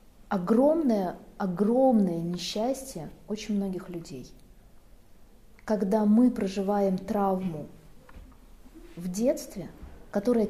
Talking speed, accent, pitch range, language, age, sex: 70 wpm, native, 185-225 Hz, Russian, 20-39, female